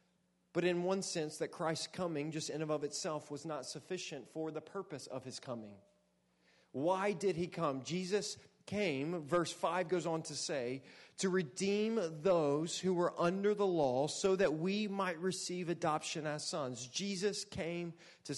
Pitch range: 140-180 Hz